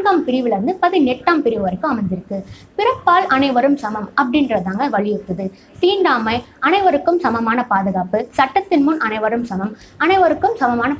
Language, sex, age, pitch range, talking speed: Tamil, female, 20-39, 215-335 Hz, 115 wpm